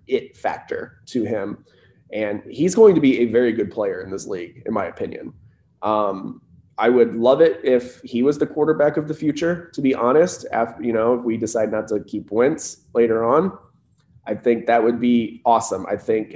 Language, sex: English, male